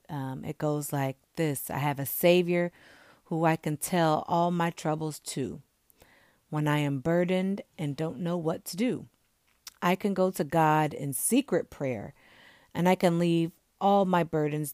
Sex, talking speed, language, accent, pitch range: female, 170 wpm, English, American, 145-185 Hz